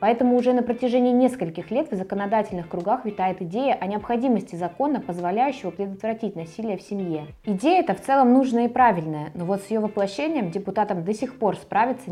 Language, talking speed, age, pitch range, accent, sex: Russian, 180 wpm, 20-39, 175-230 Hz, native, female